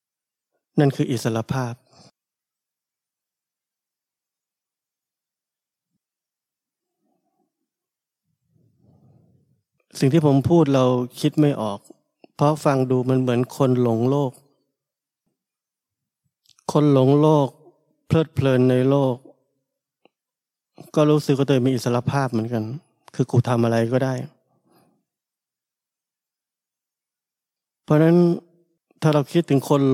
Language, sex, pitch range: Thai, male, 125-145 Hz